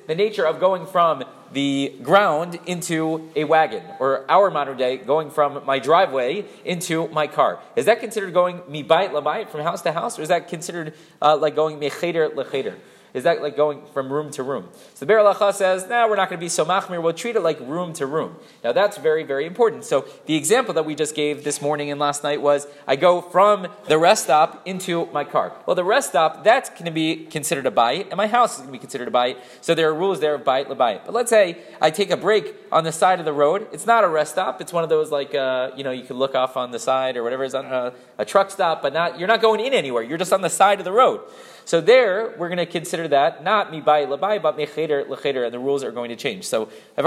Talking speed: 265 wpm